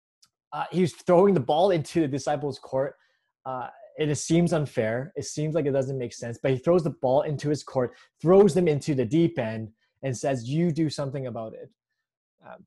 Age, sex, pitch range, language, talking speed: 20-39, male, 130-170 Hz, English, 200 wpm